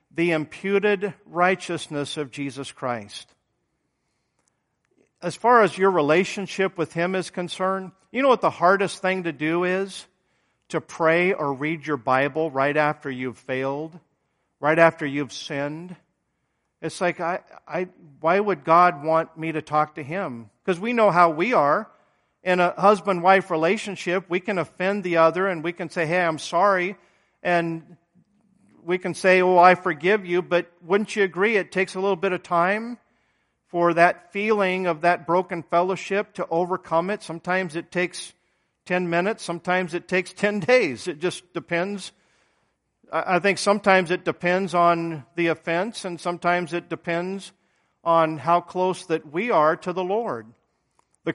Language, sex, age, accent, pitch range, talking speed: English, male, 50-69, American, 165-190 Hz, 160 wpm